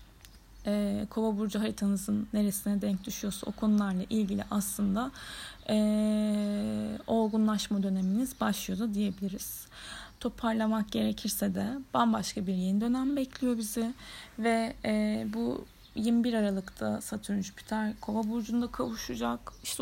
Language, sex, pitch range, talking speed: Turkish, female, 200-225 Hz, 110 wpm